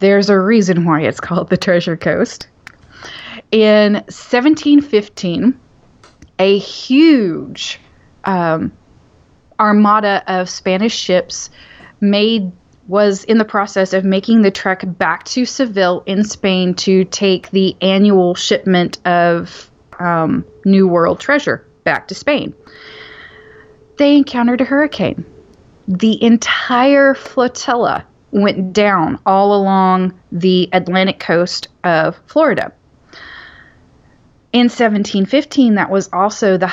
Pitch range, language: 175-215 Hz, English